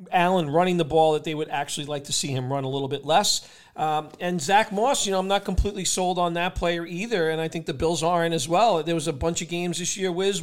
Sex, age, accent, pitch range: male, 40-59, American, 150-175 Hz